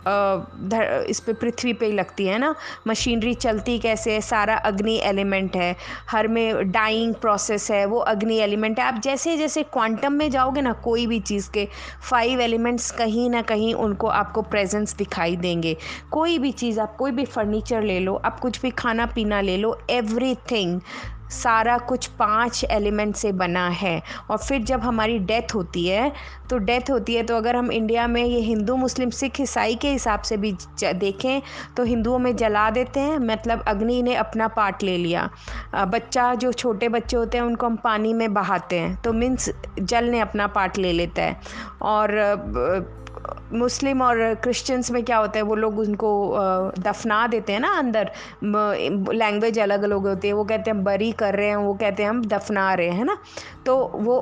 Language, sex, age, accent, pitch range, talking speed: Hindi, female, 20-39, native, 205-245 Hz, 185 wpm